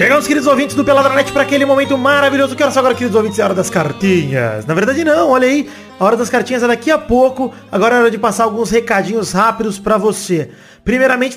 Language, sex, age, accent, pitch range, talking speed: Portuguese, male, 20-39, Brazilian, 195-245 Hz, 230 wpm